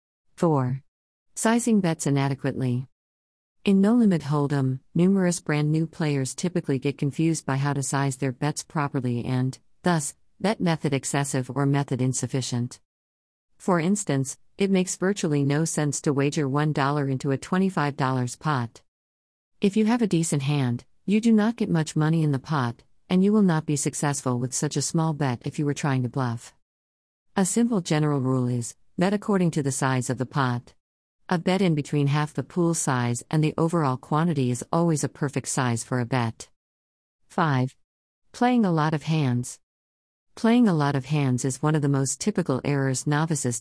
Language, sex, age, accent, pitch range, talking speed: English, female, 50-69, American, 130-160 Hz, 175 wpm